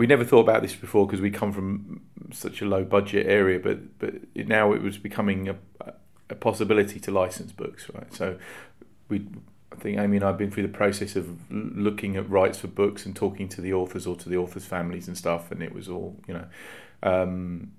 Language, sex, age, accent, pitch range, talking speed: English, male, 30-49, British, 90-100 Hz, 225 wpm